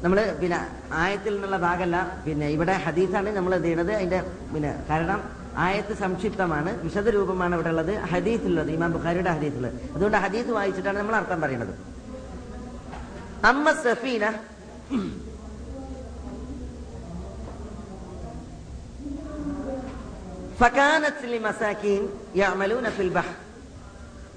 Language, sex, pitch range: Malayalam, female, 185-245 Hz